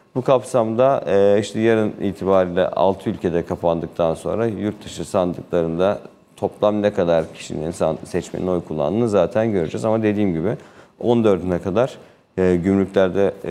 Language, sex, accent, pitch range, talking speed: Turkish, male, native, 85-110 Hz, 120 wpm